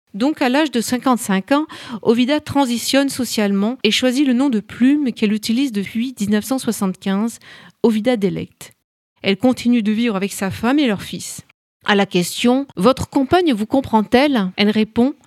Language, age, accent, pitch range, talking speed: French, 40-59, French, 205-260 Hz, 165 wpm